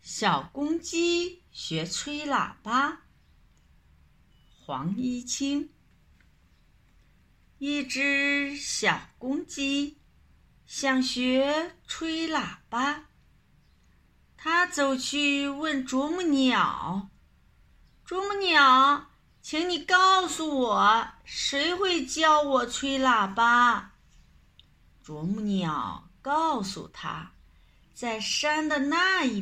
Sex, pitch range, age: female, 200-305 Hz, 50-69